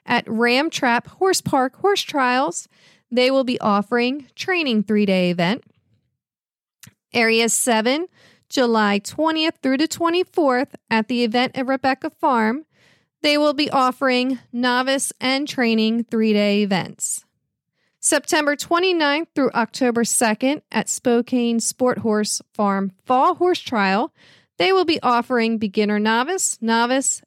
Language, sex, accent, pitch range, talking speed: English, female, American, 215-275 Hz, 125 wpm